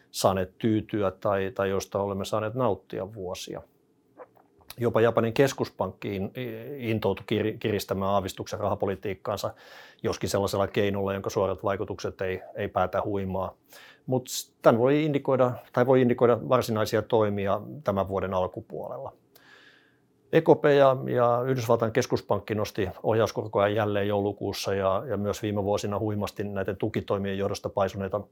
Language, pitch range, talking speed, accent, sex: Finnish, 100-125 Hz, 115 wpm, native, male